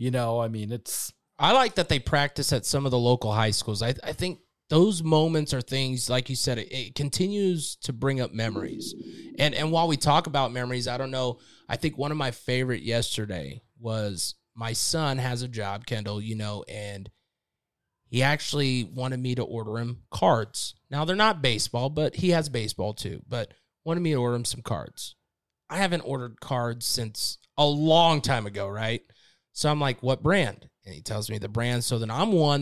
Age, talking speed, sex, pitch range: 30-49, 205 wpm, male, 115-145 Hz